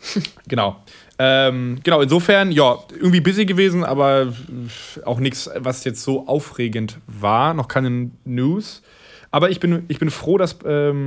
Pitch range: 125-150 Hz